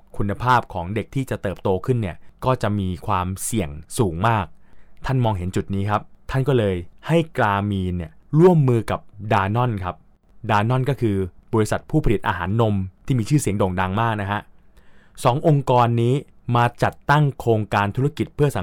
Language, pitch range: Thai, 95-125 Hz